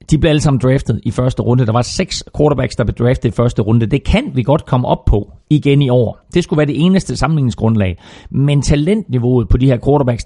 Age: 30-49